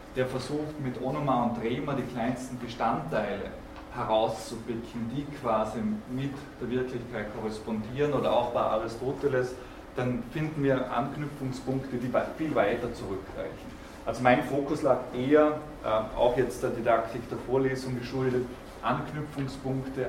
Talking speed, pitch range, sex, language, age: 120 wpm, 120-145 Hz, male, German, 20-39